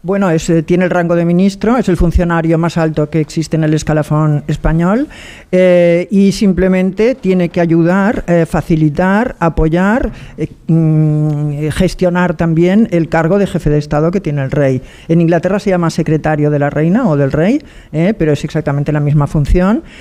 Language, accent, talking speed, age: Spanish, Spanish, 175 wpm, 50-69